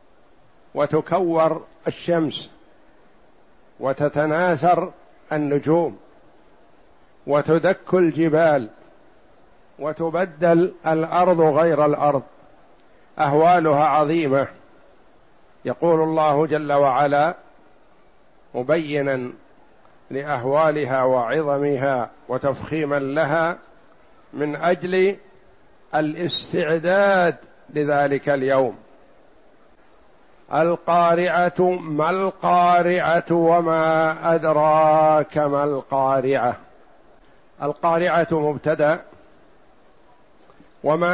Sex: male